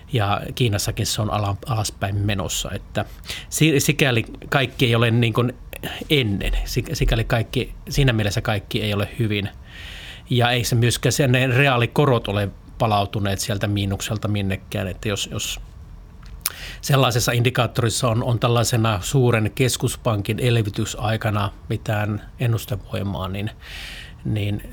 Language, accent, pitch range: Finnish, native, 105-120 Hz